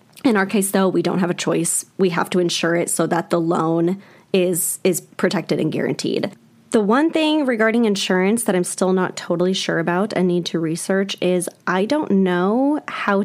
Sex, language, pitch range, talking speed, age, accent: female, English, 175-210 Hz, 200 wpm, 10-29, American